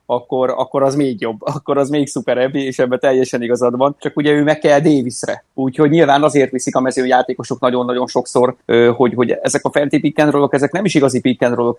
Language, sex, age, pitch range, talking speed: Hungarian, male, 30-49, 115-130 Hz, 205 wpm